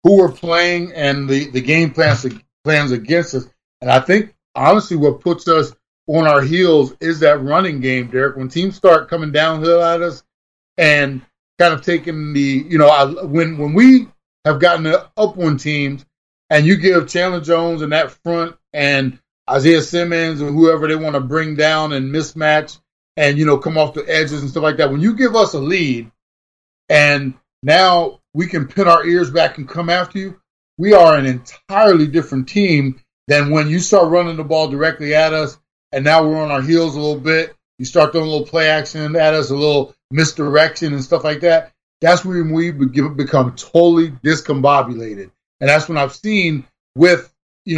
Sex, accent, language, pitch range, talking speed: male, American, English, 145-170 Hz, 190 wpm